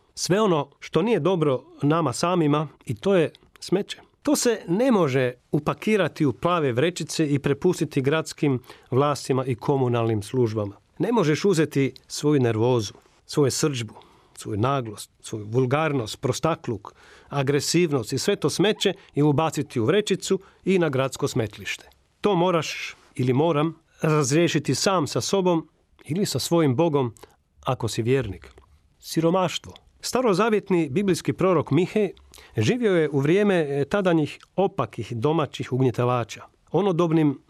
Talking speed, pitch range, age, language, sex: 130 wpm, 130-175 Hz, 40-59, Croatian, male